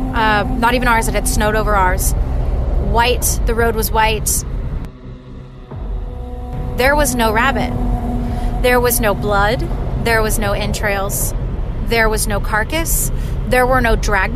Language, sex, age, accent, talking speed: English, female, 30-49, American, 140 wpm